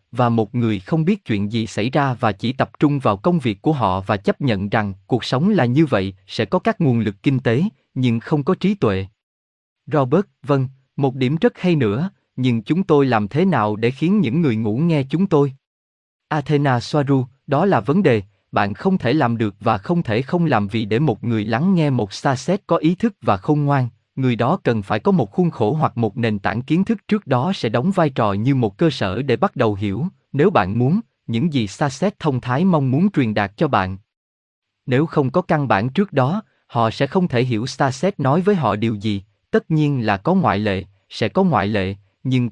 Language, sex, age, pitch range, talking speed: Vietnamese, male, 20-39, 110-160 Hz, 225 wpm